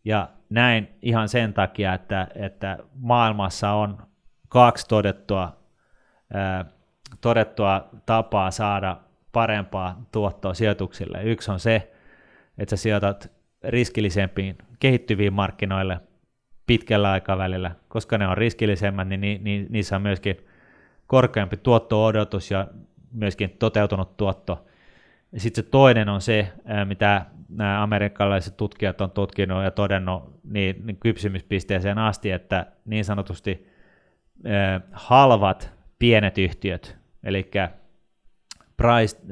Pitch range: 95-110 Hz